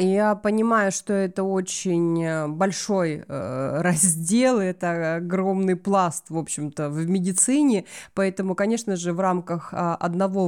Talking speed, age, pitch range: 125 wpm, 20-39, 175-205 Hz